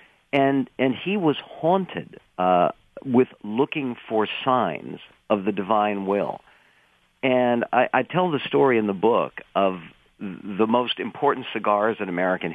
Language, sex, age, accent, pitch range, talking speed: English, male, 50-69, American, 100-130 Hz, 145 wpm